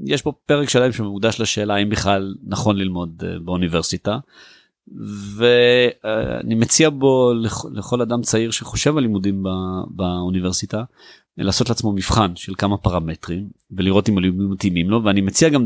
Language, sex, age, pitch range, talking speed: Hebrew, male, 30-49, 95-120 Hz, 135 wpm